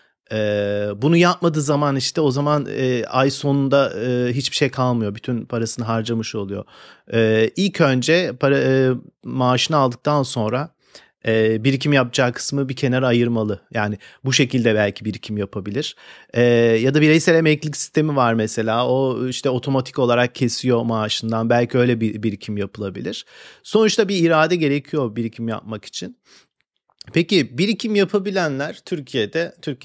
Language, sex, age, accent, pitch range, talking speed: Turkish, male, 40-59, native, 120-155 Hz, 125 wpm